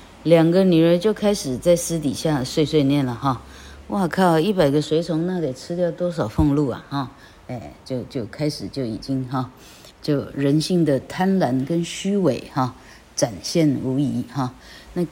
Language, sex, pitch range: Chinese, female, 130-165 Hz